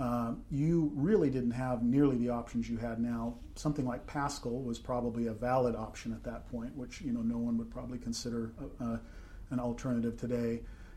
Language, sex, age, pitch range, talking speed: English, male, 40-59, 115-130 Hz, 185 wpm